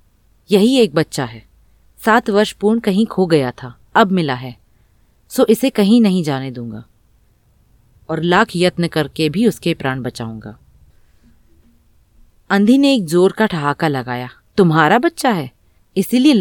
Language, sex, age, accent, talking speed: Hindi, female, 30-49, native, 145 wpm